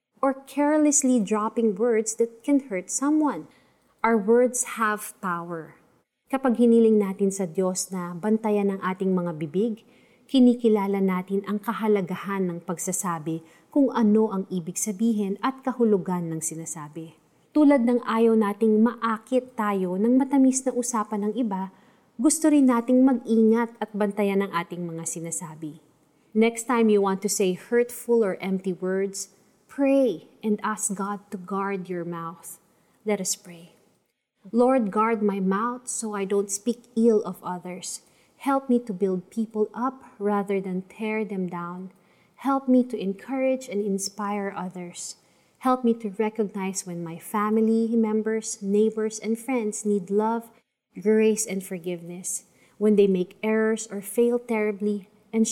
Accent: native